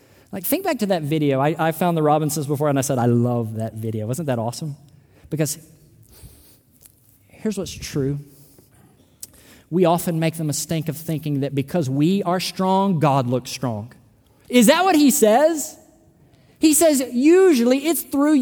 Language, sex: English, male